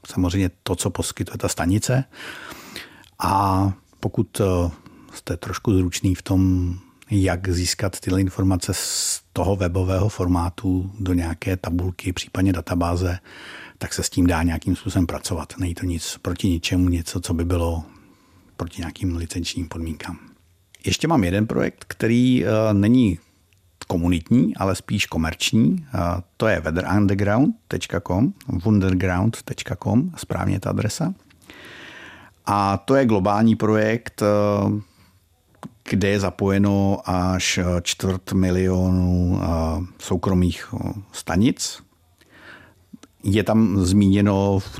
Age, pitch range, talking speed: 50-69, 90-100 Hz, 105 wpm